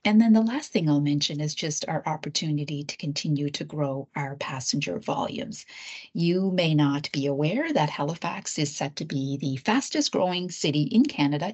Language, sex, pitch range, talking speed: English, female, 145-180 Hz, 180 wpm